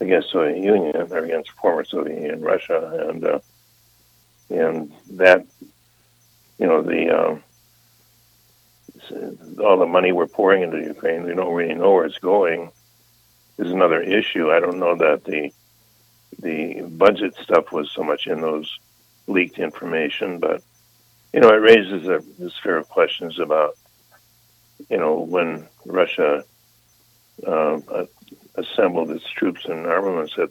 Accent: American